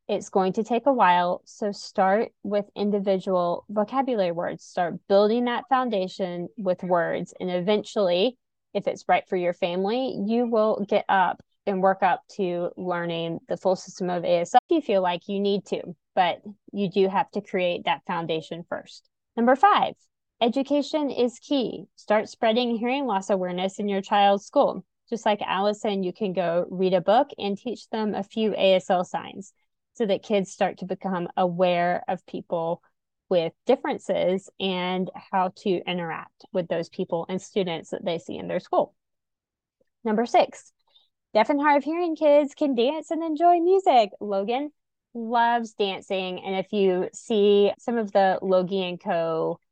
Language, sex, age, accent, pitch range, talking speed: English, female, 20-39, American, 185-235 Hz, 165 wpm